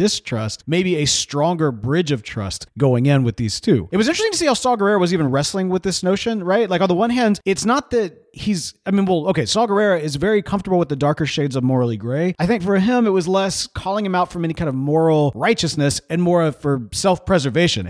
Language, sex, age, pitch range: English, male, 40-59, 140-195 Hz